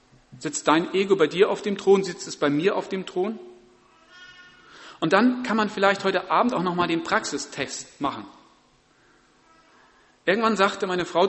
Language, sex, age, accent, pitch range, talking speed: German, male, 40-59, German, 160-220 Hz, 165 wpm